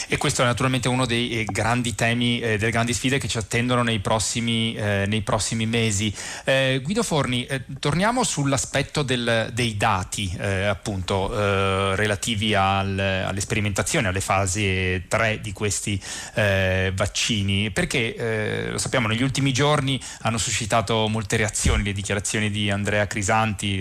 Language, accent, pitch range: Italian, native, 100-120 Hz